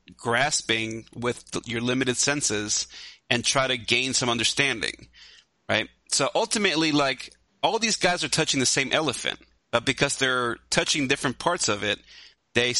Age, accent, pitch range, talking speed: 30-49, American, 115-150 Hz, 150 wpm